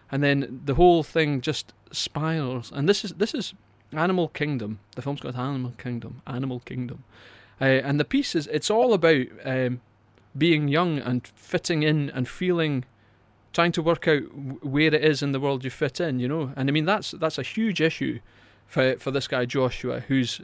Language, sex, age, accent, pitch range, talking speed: English, male, 30-49, British, 120-145 Hz, 195 wpm